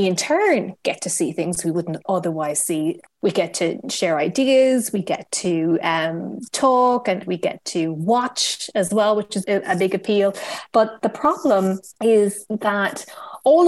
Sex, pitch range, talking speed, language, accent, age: female, 175-225 Hz, 170 wpm, English, Irish, 20-39